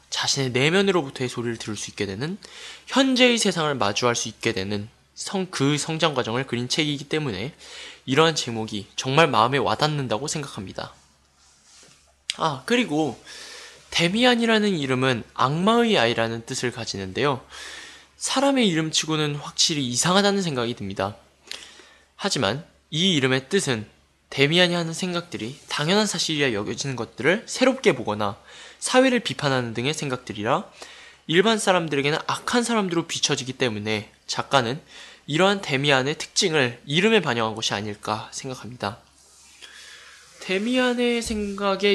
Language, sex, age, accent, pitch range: Korean, male, 20-39, native, 120-200 Hz